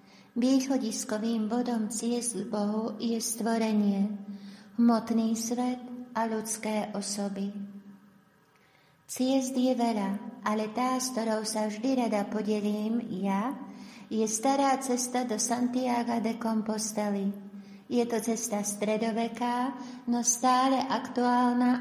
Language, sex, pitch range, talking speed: Slovak, female, 210-245 Hz, 100 wpm